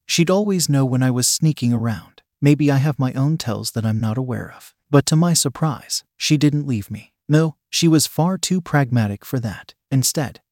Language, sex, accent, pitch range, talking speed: English, male, American, 125-155 Hz, 205 wpm